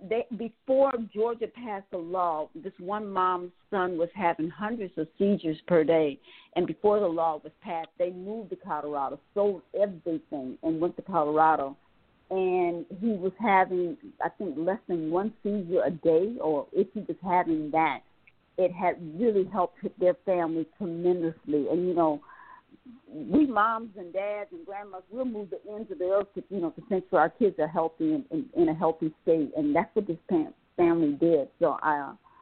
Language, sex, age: English, female, 50-69